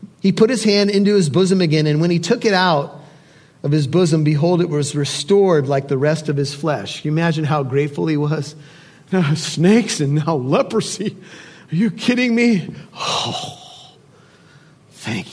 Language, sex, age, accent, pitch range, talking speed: English, male, 40-59, American, 170-285 Hz, 170 wpm